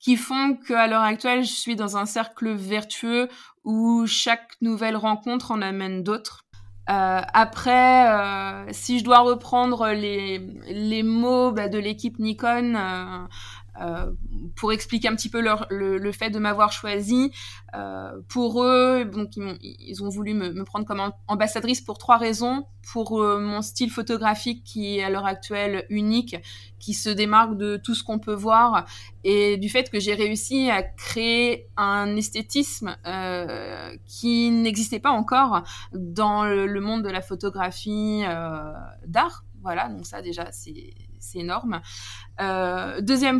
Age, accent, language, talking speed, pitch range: 20-39, French, French, 160 wpm, 190-230 Hz